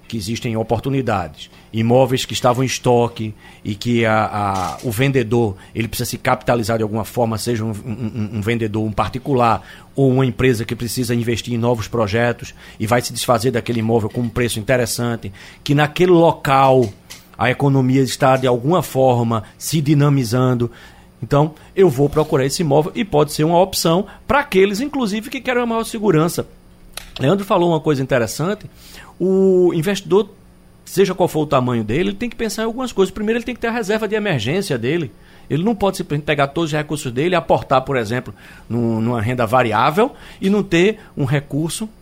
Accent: Brazilian